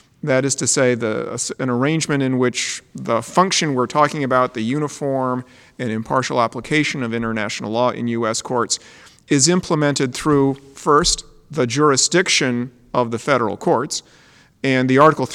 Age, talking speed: 40-59, 145 wpm